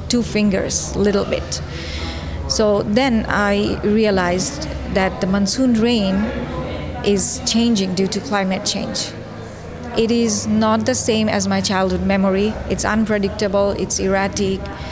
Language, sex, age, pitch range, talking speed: English, female, 30-49, 185-225 Hz, 130 wpm